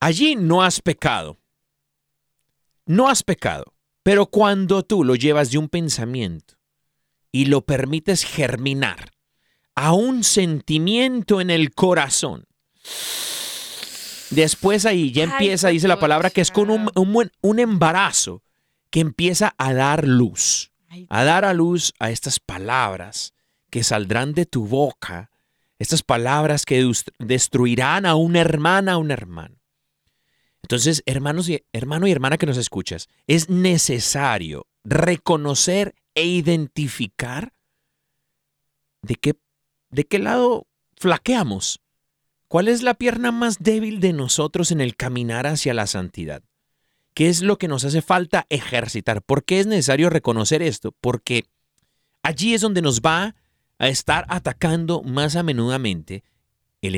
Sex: male